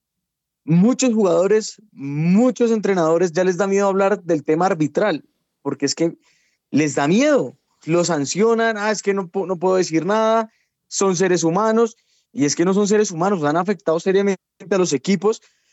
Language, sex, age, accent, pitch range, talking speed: Spanish, male, 20-39, Colombian, 150-205 Hz, 170 wpm